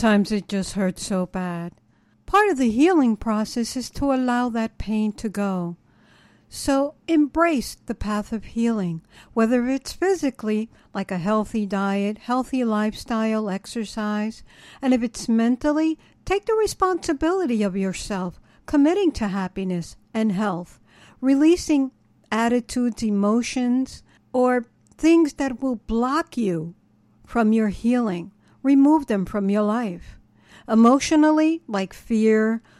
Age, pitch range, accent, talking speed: 60-79, 205-270 Hz, American, 125 wpm